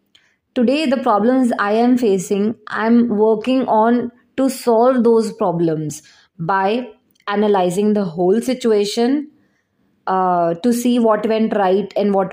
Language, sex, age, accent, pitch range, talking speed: Hindi, female, 20-39, native, 205-250 Hz, 130 wpm